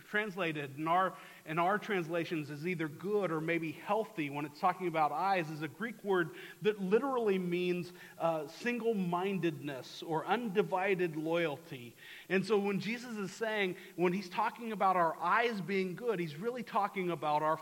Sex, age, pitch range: male, 40-59, 165-205 Hz